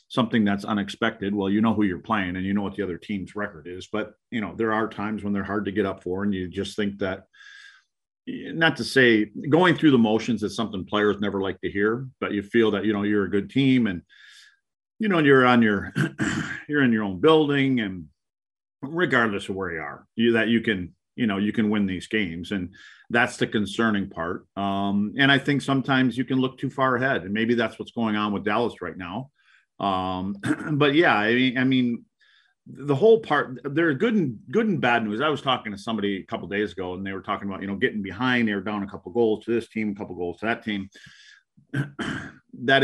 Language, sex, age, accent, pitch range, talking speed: English, male, 40-59, American, 100-125 Hz, 235 wpm